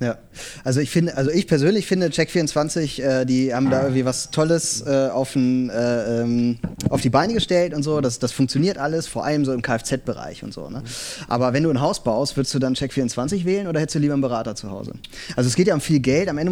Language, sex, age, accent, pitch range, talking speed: German, male, 30-49, German, 130-155 Hz, 245 wpm